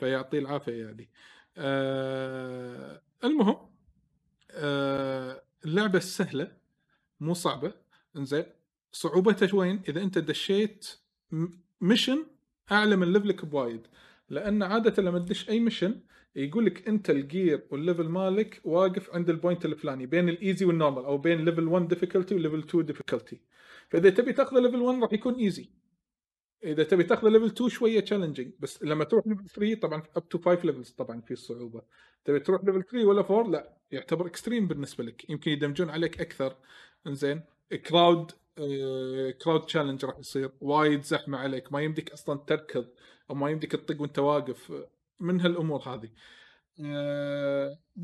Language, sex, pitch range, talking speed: Arabic, male, 145-200 Hz, 145 wpm